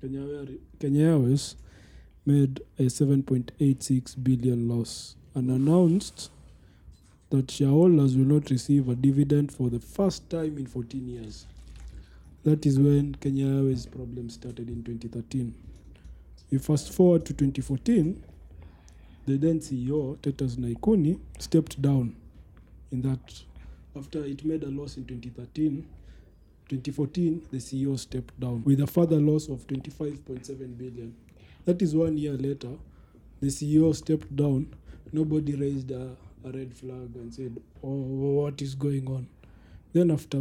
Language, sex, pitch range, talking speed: English, male, 120-145 Hz, 130 wpm